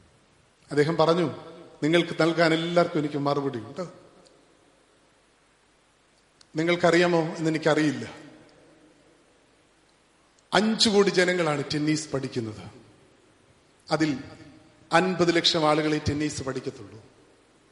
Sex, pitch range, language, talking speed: male, 155-190 Hz, English, 90 wpm